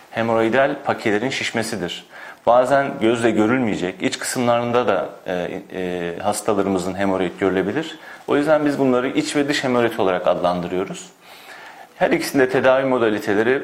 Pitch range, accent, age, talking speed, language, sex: 100-125 Hz, native, 40-59, 125 wpm, Turkish, male